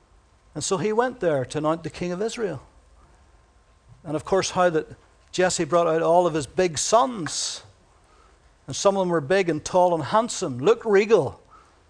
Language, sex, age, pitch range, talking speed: English, male, 60-79, 140-200 Hz, 180 wpm